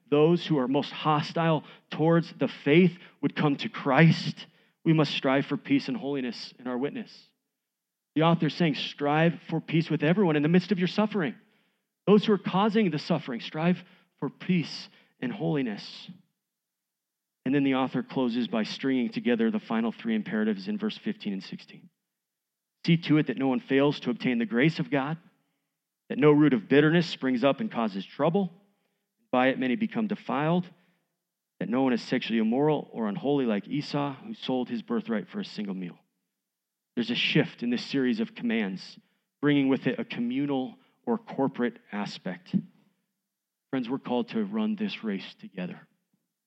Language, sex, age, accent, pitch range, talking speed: English, male, 40-59, American, 145-210 Hz, 175 wpm